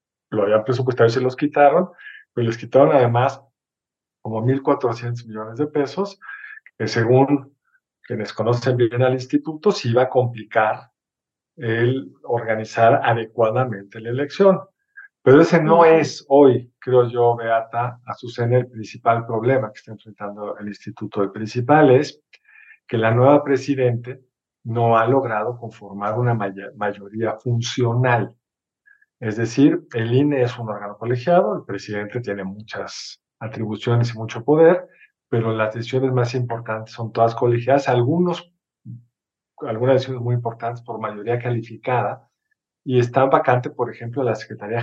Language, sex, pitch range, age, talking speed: Spanish, male, 110-135 Hz, 50-69, 140 wpm